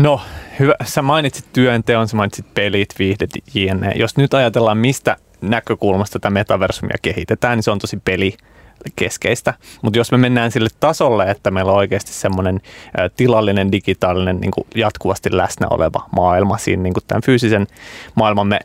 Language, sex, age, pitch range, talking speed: Finnish, male, 30-49, 95-120 Hz, 150 wpm